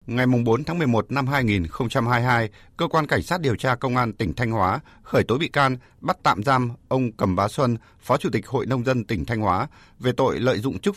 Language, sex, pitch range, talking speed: Vietnamese, male, 105-135 Hz, 230 wpm